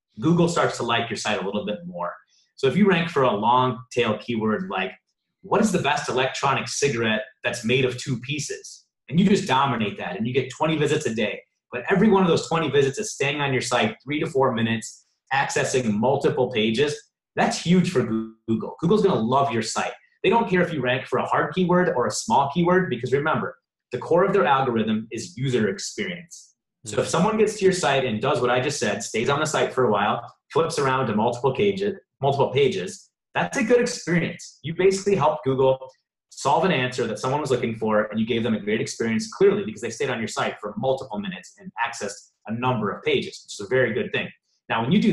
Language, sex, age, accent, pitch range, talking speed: English, male, 30-49, American, 120-190 Hz, 230 wpm